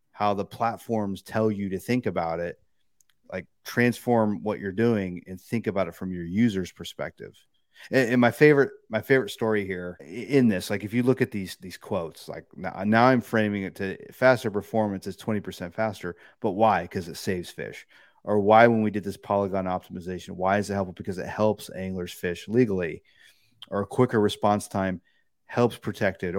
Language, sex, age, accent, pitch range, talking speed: English, male, 30-49, American, 95-110 Hz, 190 wpm